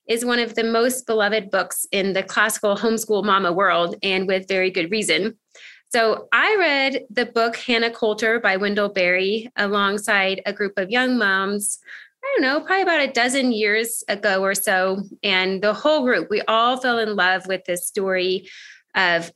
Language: English